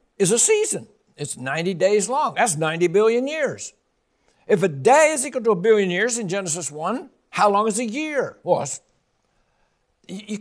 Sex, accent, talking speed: male, American, 175 wpm